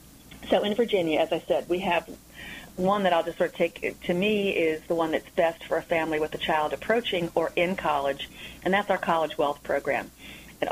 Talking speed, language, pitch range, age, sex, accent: 220 wpm, English, 160-190 Hz, 40-59, female, American